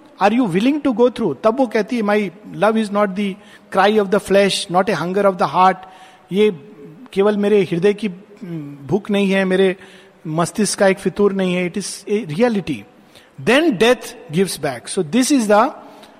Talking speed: 185 wpm